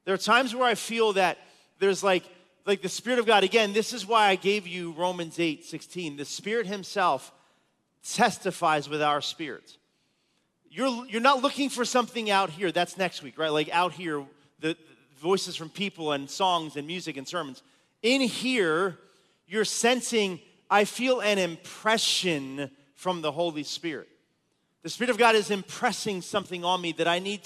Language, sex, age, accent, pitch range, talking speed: English, male, 30-49, American, 175-220 Hz, 175 wpm